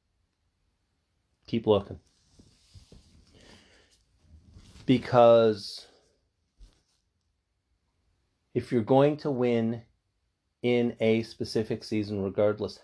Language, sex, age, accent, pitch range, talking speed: English, male, 40-59, American, 90-120 Hz, 60 wpm